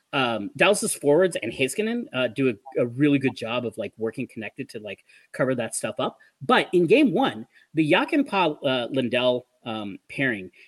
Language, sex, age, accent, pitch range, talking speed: English, male, 30-49, American, 130-185 Hz, 190 wpm